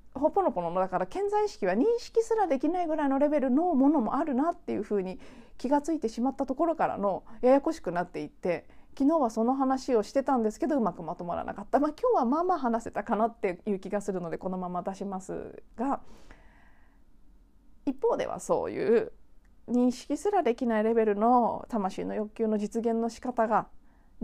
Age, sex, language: 40-59, female, Japanese